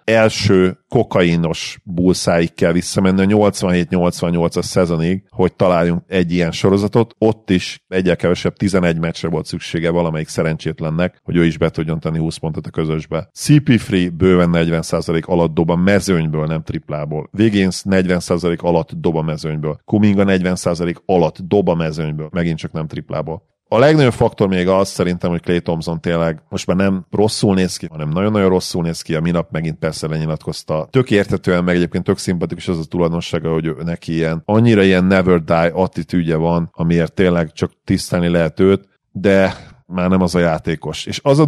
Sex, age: male, 40-59